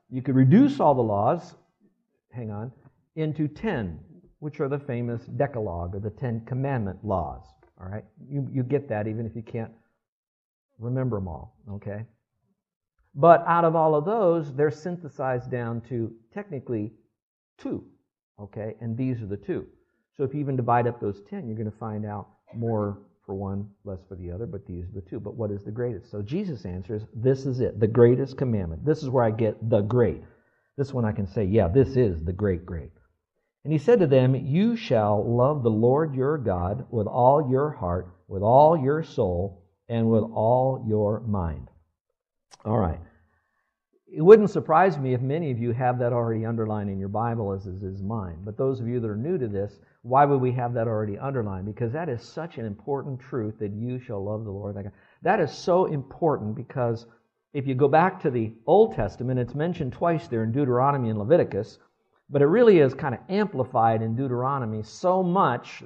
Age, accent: 50-69, American